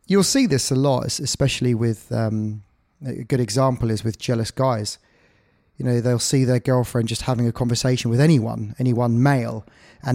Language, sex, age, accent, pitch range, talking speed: English, male, 20-39, British, 120-155 Hz, 175 wpm